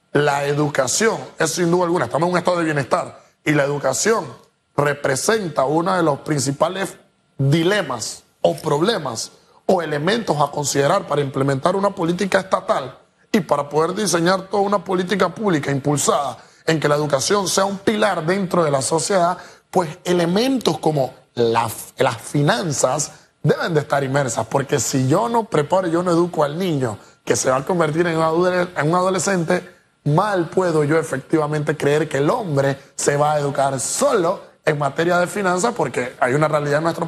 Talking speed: 165 wpm